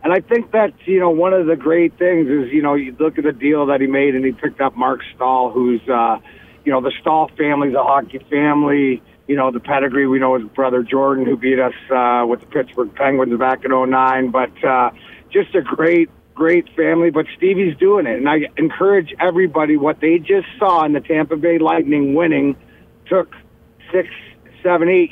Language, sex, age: English, male, 50-69